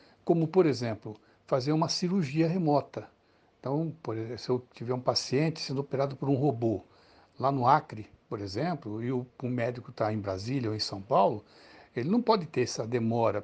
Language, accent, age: Portuguese, Brazilian, 60-79